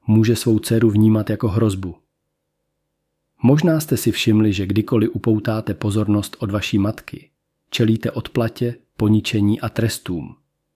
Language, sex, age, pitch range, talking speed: Czech, male, 40-59, 90-110 Hz, 125 wpm